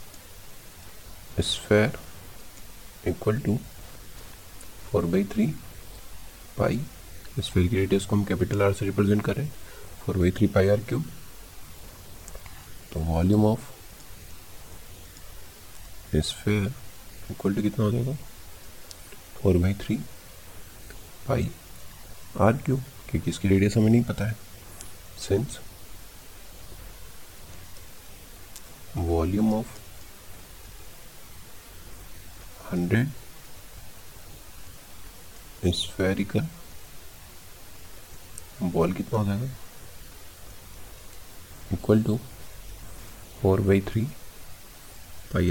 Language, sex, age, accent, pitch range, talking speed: Hindi, male, 50-69, native, 85-105 Hz, 80 wpm